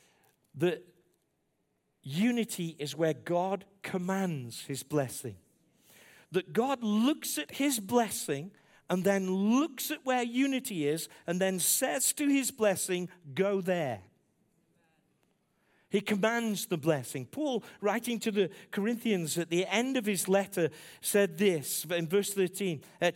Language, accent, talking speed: English, British, 130 wpm